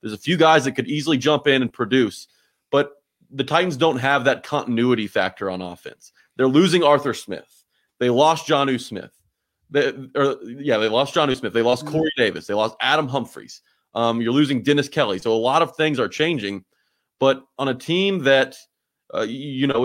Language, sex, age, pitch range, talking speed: English, male, 30-49, 115-140 Hz, 195 wpm